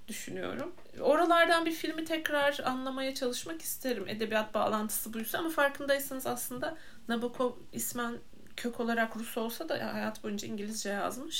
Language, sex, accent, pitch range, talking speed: Turkish, female, native, 190-260 Hz, 130 wpm